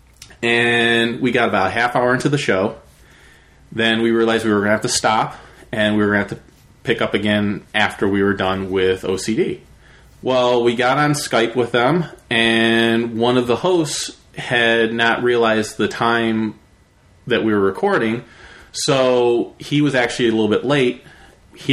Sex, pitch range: male, 100-125 Hz